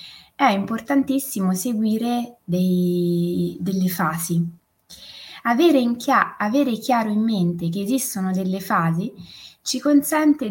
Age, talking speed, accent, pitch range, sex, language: 20-39, 110 wpm, native, 180-230 Hz, female, Italian